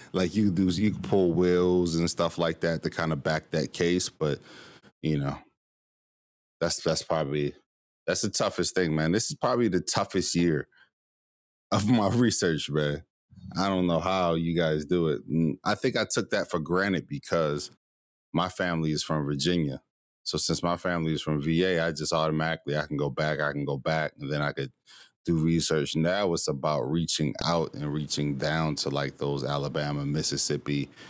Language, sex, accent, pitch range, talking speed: English, male, American, 75-85 Hz, 185 wpm